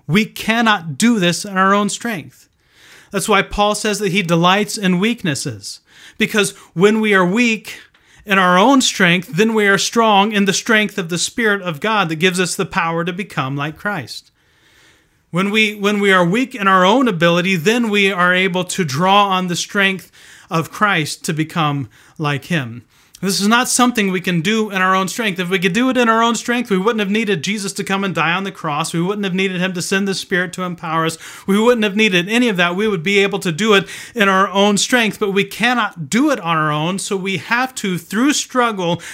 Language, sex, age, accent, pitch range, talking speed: English, male, 30-49, American, 170-210 Hz, 225 wpm